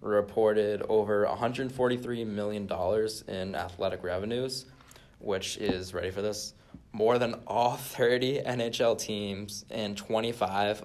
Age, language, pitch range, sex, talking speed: 20-39, English, 95-115 Hz, male, 110 wpm